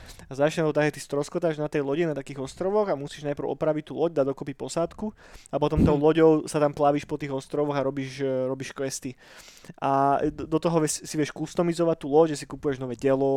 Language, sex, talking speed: Slovak, male, 215 wpm